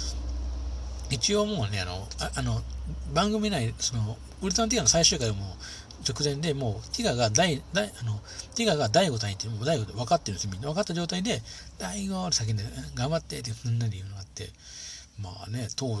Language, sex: Japanese, male